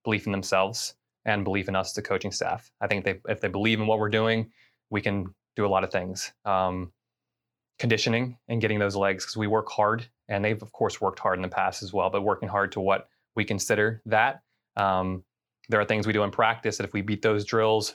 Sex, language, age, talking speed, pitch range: male, English, 20-39, 235 wpm, 95-110 Hz